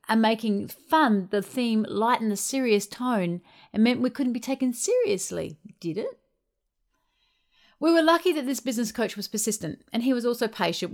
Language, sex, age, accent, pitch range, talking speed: English, female, 40-59, Australian, 215-305 Hz, 175 wpm